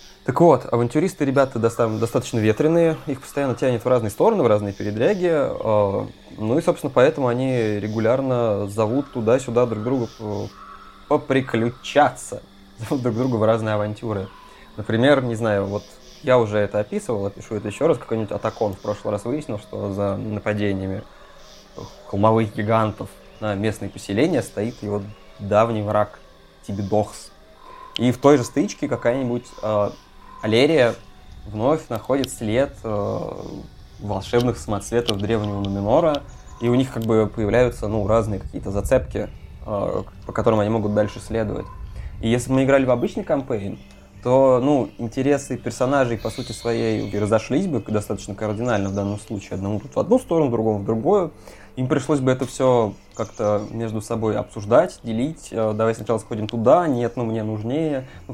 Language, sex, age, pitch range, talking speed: Russian, male, 20-39, 105-125 Hz, 150 wpm